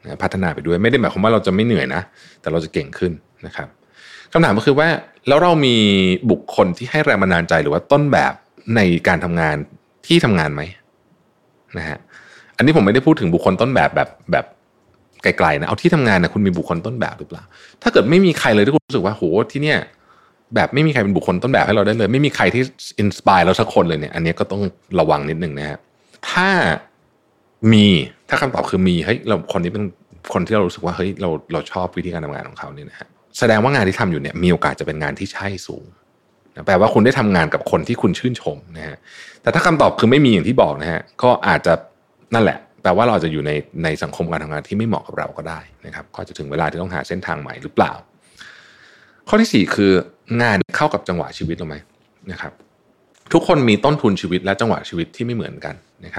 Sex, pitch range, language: male, 85-125 Hz, Thai